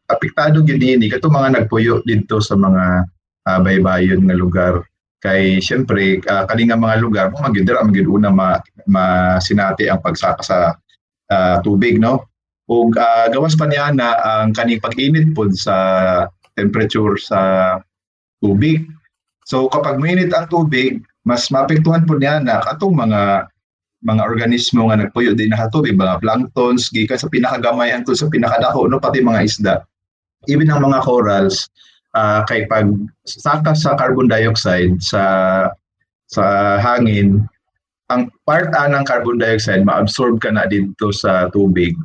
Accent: native